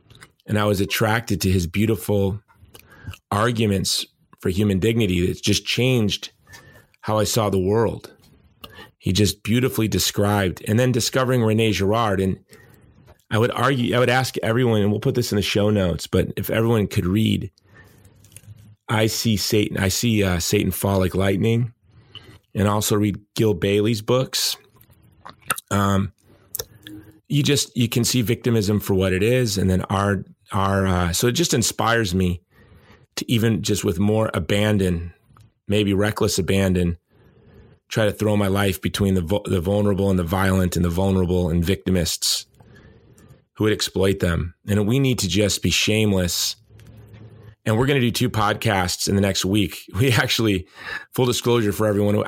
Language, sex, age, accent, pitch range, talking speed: English, male, 30-49, American, 95-115 Hz, 160 wpm